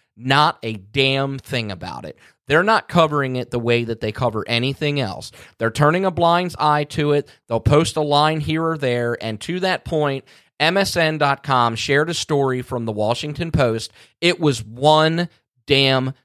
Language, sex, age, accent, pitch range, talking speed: English, male, 30-49, American, 120-160 Hz, 175 wpm